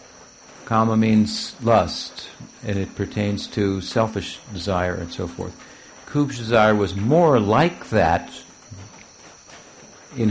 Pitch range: 100-115 Hz